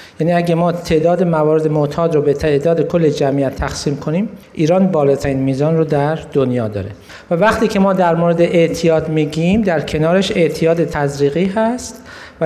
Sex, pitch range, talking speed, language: male, 155-190 Hz, 165 wpm, Persian